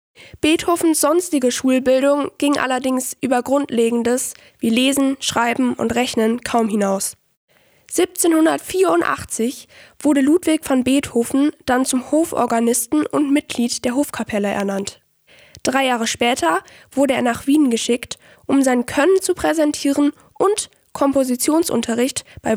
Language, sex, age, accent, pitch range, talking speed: German, female, 10-29, German, 245-300 Hz, 115 wpm